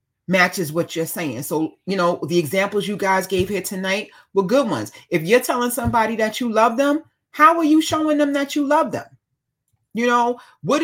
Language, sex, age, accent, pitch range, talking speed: English, female, 30-49, American, 190-275 Hz, 205 wpm